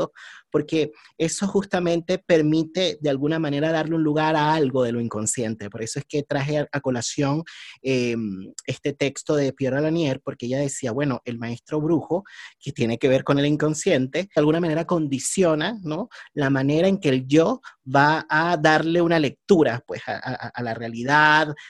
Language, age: Spanish, 30-49